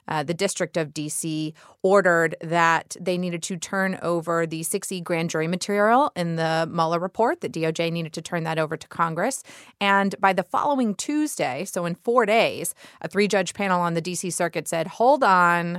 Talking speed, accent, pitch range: 185 wpm, American, 170-205 Hz